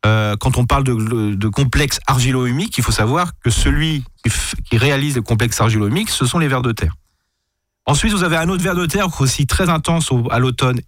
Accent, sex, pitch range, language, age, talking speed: French, male, 115-150 Hz, French, 30-49, 220 wpm